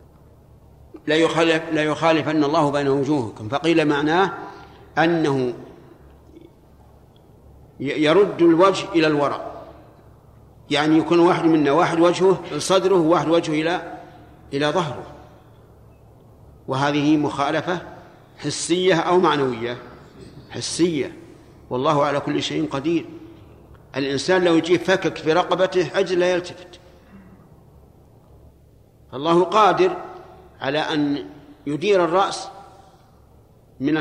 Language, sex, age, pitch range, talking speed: Arabic, male, 50-69, 145-180 Hz, 95 wpm